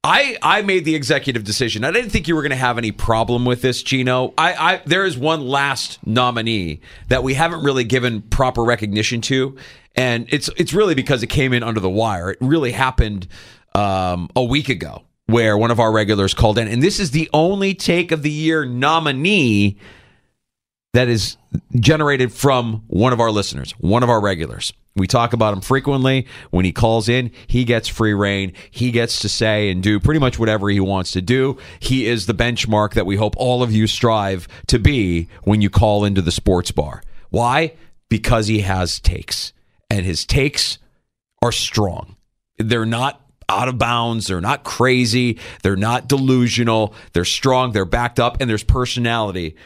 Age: 40-59